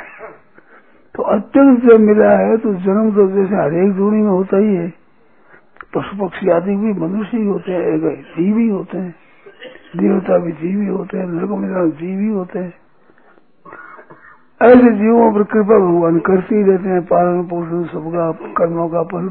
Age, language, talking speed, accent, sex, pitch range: 60-79, Hindi, 150 wpm, native, male, 175-220 Hz